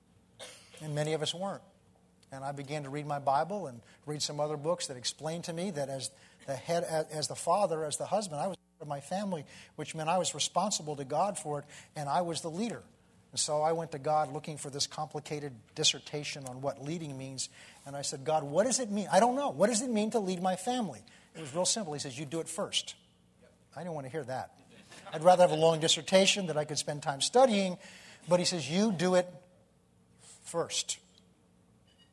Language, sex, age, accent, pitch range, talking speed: English, male, 50-69, American, 145-190 Hz, 225 wpm